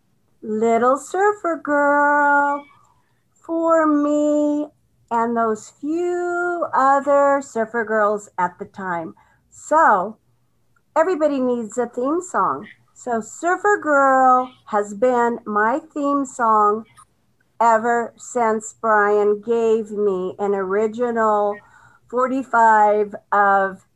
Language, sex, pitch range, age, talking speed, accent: English, female, 210-285 Hz, 50-69, 95 wpm, American